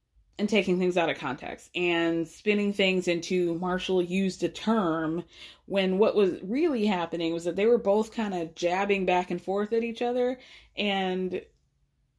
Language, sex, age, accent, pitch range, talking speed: English, female, 20-39, American, 170-230 Hz, 165 wpm